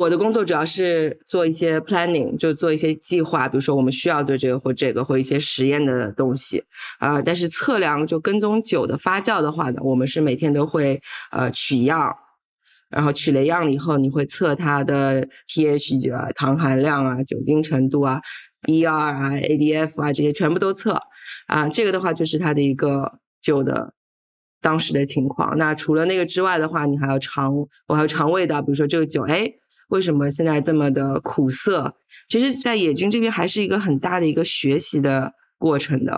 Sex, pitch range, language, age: female, 140-170 Hz, Chinese, 20-39